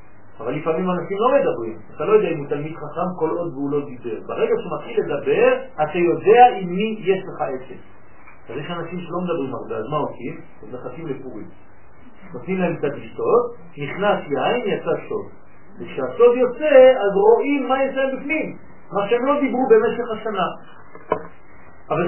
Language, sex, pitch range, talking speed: French, male, 195-270 Hz, 170 wpm